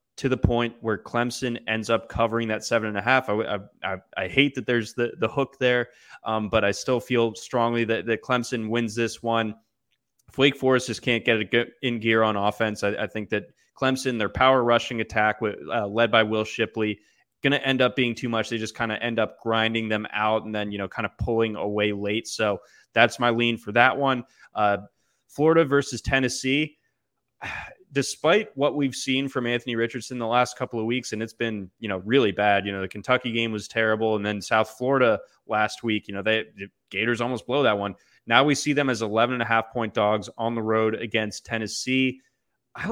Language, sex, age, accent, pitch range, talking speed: English, male, 20-39, American, 110-130 Hz, 215 wpm